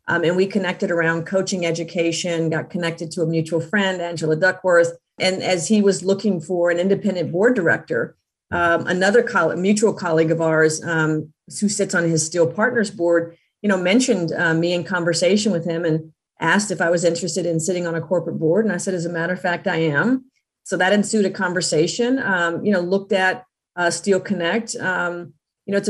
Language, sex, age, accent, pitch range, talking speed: English, female, 40-59, American, 165-195 Hz, 205 wpm